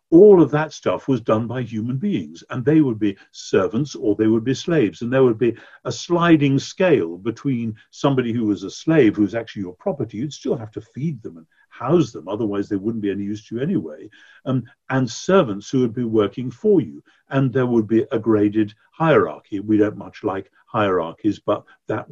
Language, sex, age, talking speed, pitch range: English, male, 50-69, 210 wpm, 105-135 Hz